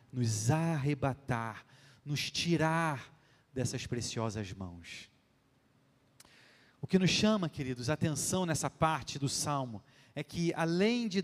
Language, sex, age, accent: Portuguese, male, 30-49, Brazilian